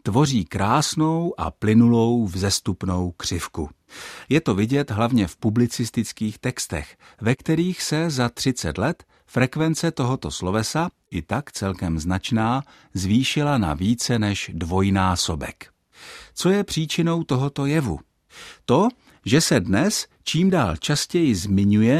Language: Czech